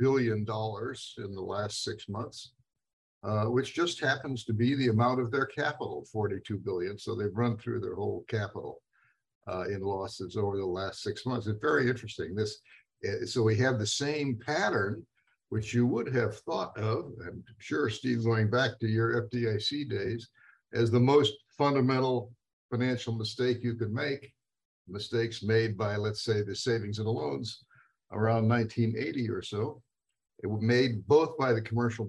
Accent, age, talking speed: American, 60-79, 170 wpm